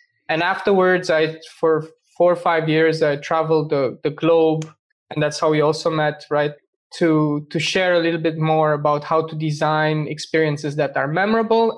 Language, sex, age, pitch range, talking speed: English, male, 20-39, 155-180 Hz, 180 wpm